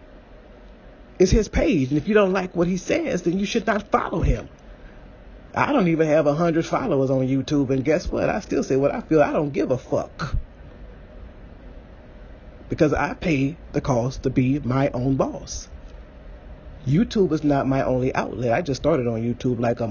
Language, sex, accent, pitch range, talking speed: English, male, American, 105-150 Hz, 185 wpm